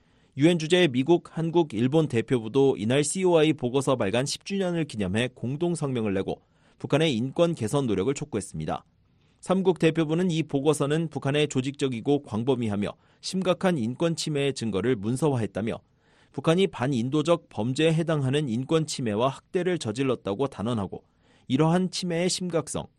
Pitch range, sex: 120-165 Hz, male